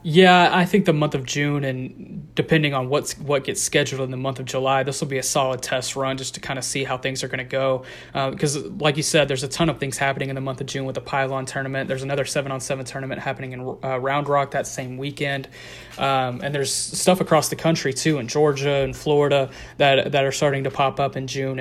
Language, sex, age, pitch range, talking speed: English, male, 20-39, 135-150 Hz, 255 wpm